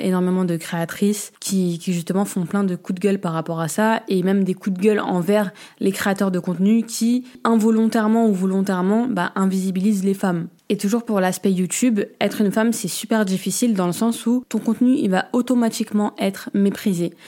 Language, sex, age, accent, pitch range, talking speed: French, female, 20-39, French, 180-215 Hz, 200 wpm